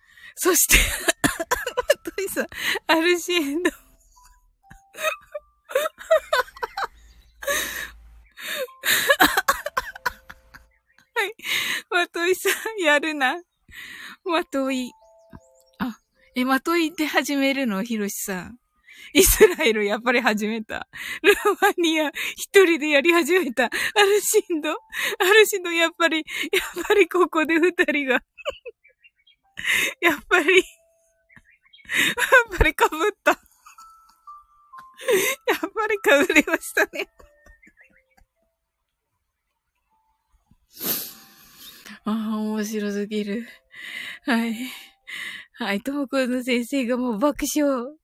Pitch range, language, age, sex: 270-415 Hz, Japanese, 20-39, female